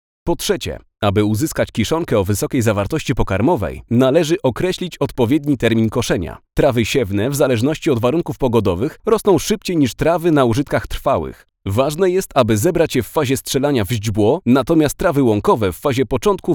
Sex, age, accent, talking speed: male, 30-49, native, 160 wpm